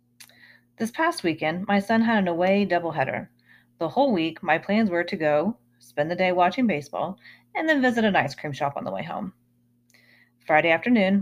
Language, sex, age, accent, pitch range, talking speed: English, female, 30-49, American, 145-230 Hz, 185 wpm